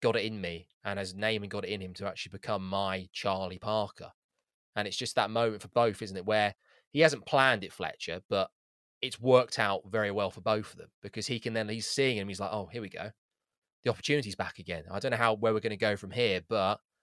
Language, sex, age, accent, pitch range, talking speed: English, male, 20-39, British, 95-110 Hz, 255 wpm